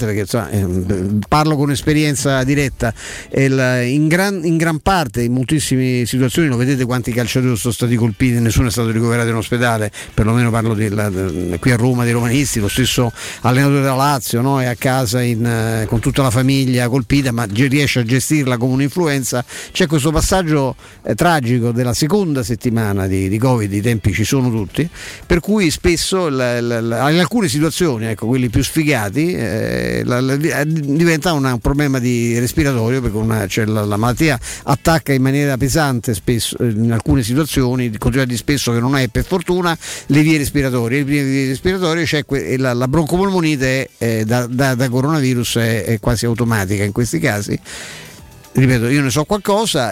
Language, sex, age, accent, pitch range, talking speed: Italian, male, 50-69, native, 115-145 Hz, 175 wpm